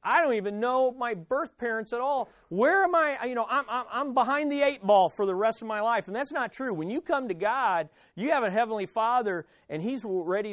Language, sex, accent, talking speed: English, male, American, 250 wpm